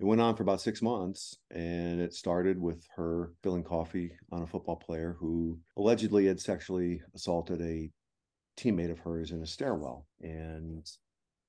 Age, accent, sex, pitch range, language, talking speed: 50-69, American, male, 80-95 Hz, English, 160 wpm